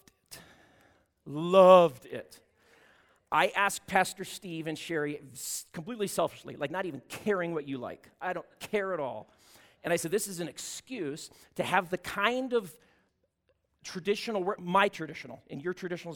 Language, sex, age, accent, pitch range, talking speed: English, male, 40-59, American, 160-210 Hz, 150 wpm